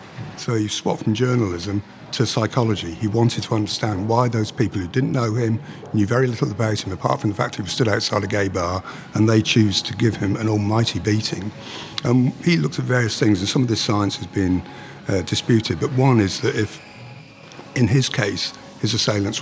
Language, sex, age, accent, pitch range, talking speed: English, male, 50-69, British, 95-120 Hz, 210 wpm